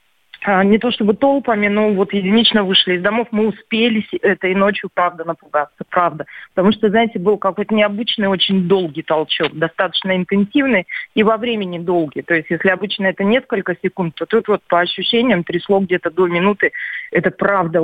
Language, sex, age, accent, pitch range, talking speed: Russian, female, 20-39, native, 185-230 Hz, 170 wpm